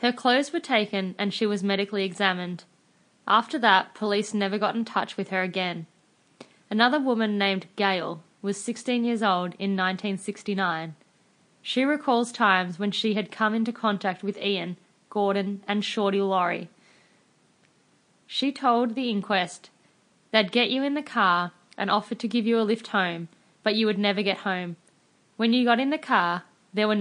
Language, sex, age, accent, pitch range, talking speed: English, female, 20-39, Australian, 190-220 Hz, 170 wpm